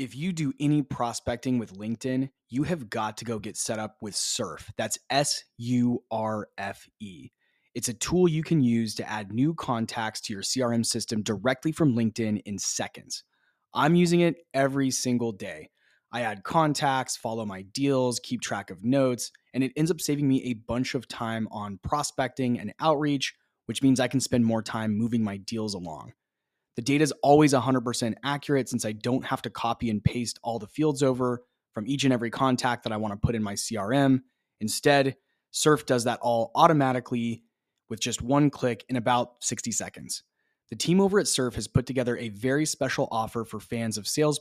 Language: English